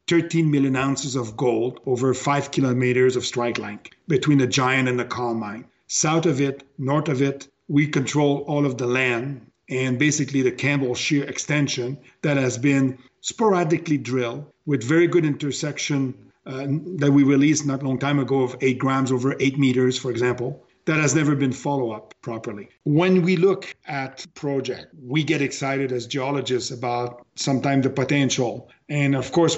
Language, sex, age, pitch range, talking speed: English, male, 50-69, 130-150 Hz, 170 wpm